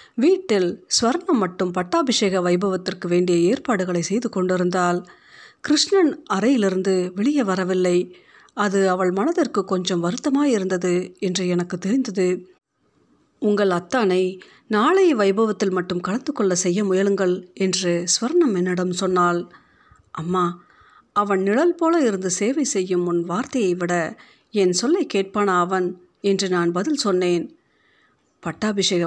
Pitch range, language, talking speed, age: 180-240 Hz, Tamil, 110 wpm, 50-69